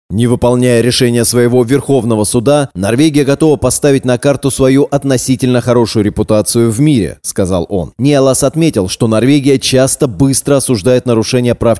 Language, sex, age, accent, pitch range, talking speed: Russian, male, 30-49, native, 110-140 Hz, 145 wpm